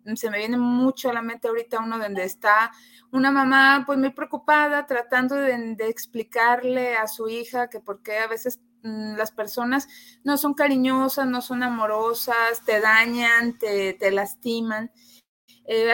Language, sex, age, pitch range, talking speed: Spanish, female, 30-49, 220-270 Hz, 160 wpm